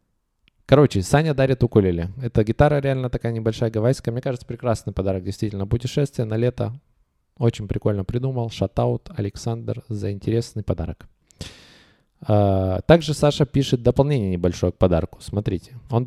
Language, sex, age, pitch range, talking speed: Russian, male, 20-39, 95-130 Hz, 130 wpm